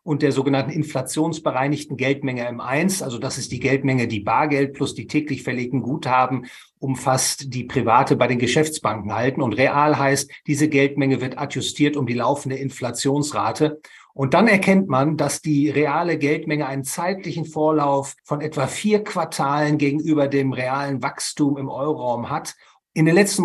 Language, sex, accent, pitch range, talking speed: German, male, German, 135-155 Hz, 155 wpm